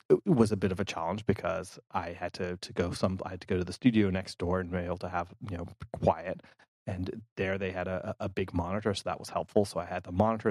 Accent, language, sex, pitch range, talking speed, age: American, English, male, 95-110 Hz, 275 wpm, 30-49